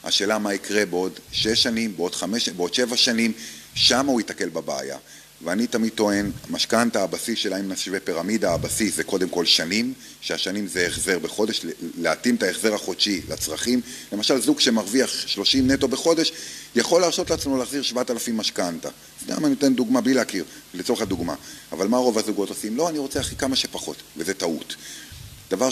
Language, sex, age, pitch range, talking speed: Hebrew, male, 30-49, 95-125 Hz, 175 wpm